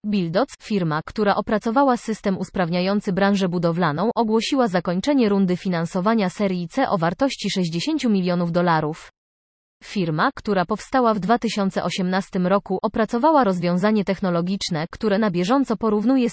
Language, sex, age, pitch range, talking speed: Polish, female, 20-39, 175-225 Hz, 120 wpm